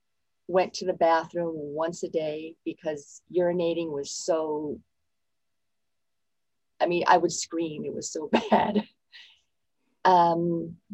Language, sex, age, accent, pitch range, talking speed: English, female, 40-59, American, 160-195 Hz, 115 wpm